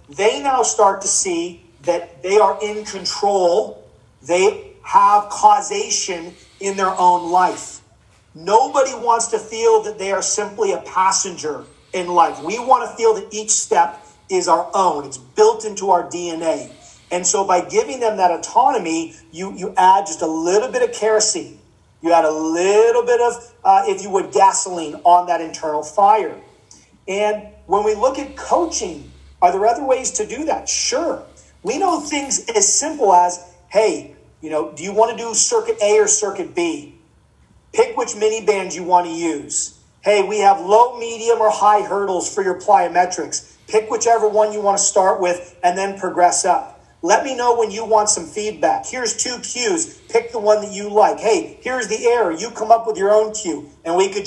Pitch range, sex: 180-235 Hz, male